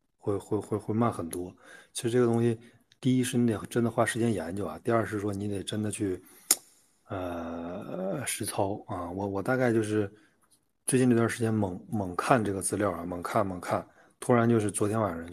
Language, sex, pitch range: Chinese, male, 95-115 Hz